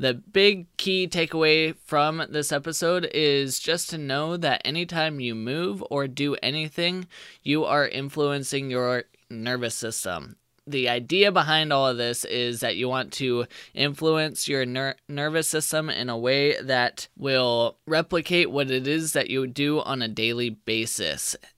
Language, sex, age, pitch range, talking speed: English, male, 20-39, 120-155 Hz, 155 wpm